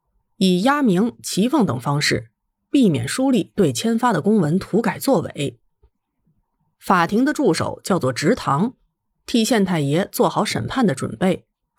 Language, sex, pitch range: Chinese, female, 165-255 Hz